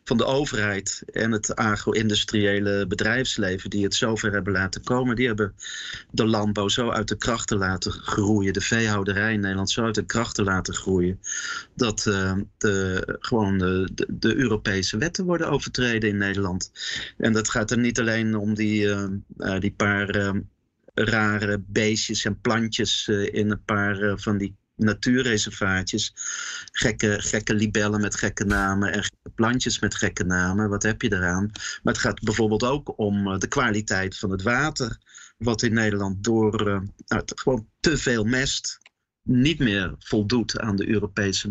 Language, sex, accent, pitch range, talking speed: Dutch, male, Dutch, 100-115 Hz, 160 wpm